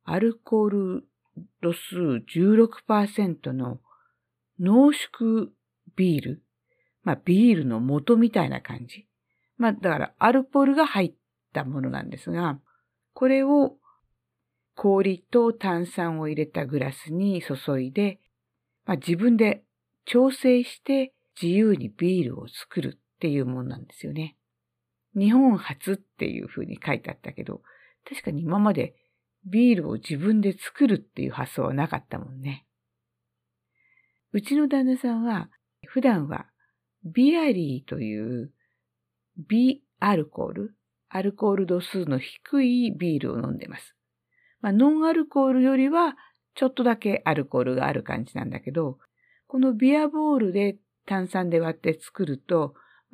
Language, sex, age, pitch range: Japanese, female, 50-69, 155-240 Hz